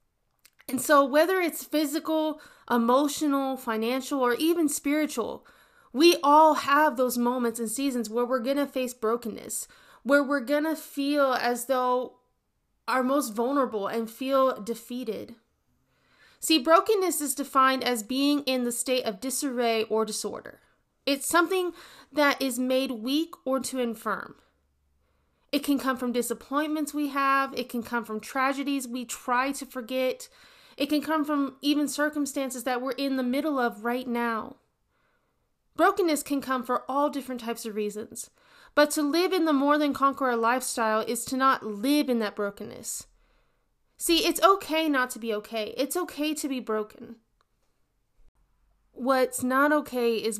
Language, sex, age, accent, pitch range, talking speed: English, female, 20-39, American, 235-290 Hz, 150 wpm